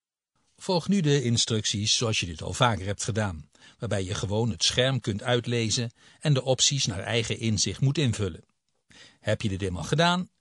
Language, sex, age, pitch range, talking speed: Dutch, male, 60-79, 110-140 Hz, 180 wpm